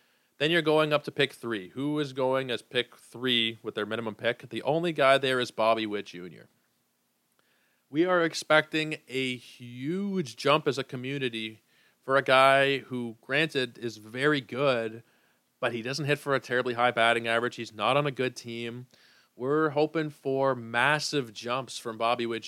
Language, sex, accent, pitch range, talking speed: English, male, American, 115-140 Hz, 175 wpm